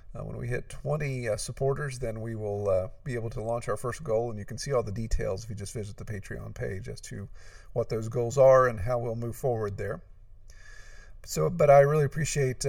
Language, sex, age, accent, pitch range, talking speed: English, male, 50-69, American, 110-145 Hz, 230 wpm